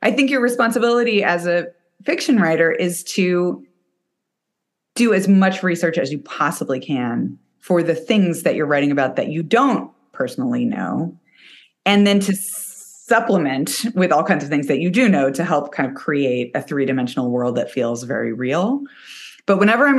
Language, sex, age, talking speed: English, female, 30-49, 175 wpm